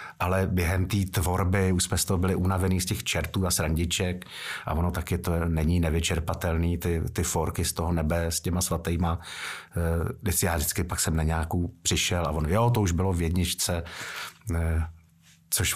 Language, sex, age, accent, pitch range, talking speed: Czech, male, 50-69, native, 85-100 Hz, 185 wpm